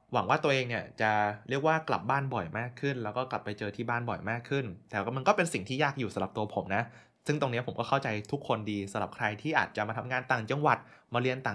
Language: Thai